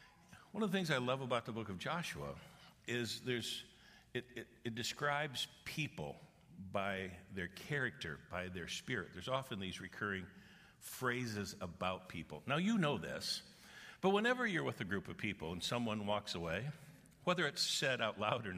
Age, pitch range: 60-79, 95-135 Hz